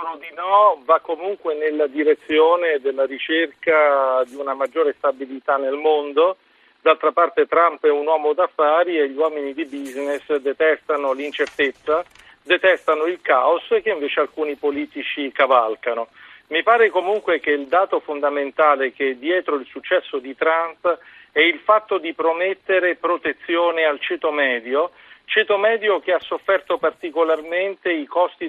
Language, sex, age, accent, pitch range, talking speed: Italian, male, 50-69, native, 150-190 Hz, 145 wpm